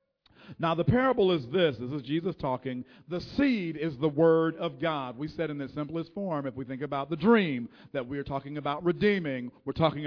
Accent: American